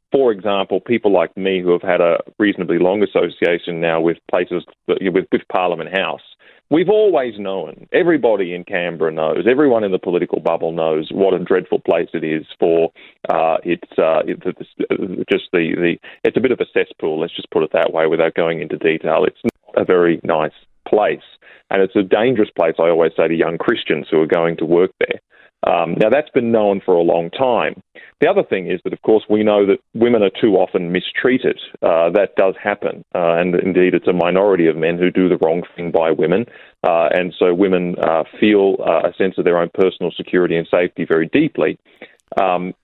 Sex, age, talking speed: male, 30-49, 205 wpm